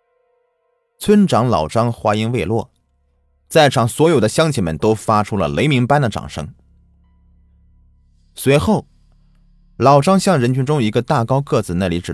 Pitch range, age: 90-125 Hz, 30-49